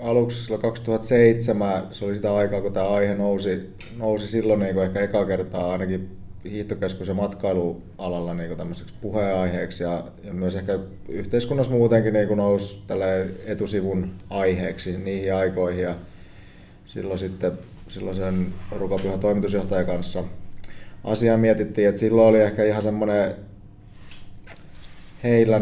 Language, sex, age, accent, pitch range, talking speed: Finnish, male, 30-49, native, 95-105 Hz, 125 wpm